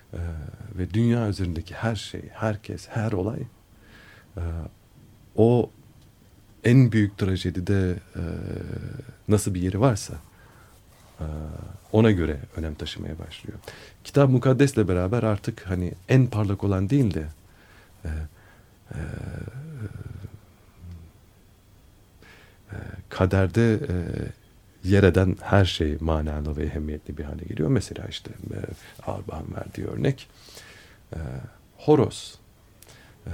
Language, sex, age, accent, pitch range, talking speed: Turkish, male, 50-69, native, 90-110 Hz, 95 wpm